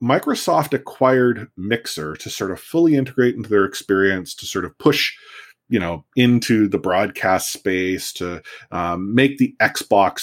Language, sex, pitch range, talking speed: English, male, 90-125 Hz, 155 wpm